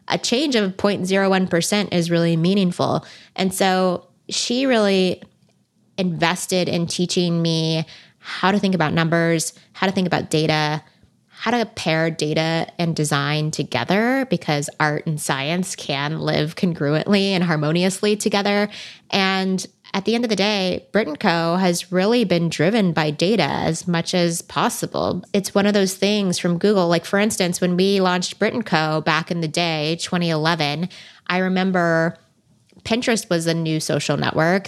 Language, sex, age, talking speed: English, female, 20-39, 155 wpm